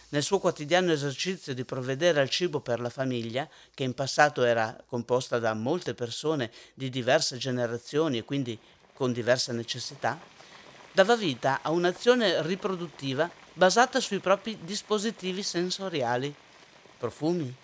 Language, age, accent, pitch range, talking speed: Italian, 50-69, native, 135-185 Hz, 130 wpm